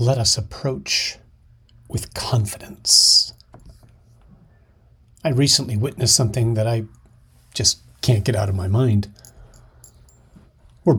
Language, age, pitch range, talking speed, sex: English, 40-59, 105-125 Hz, 105 wpm, male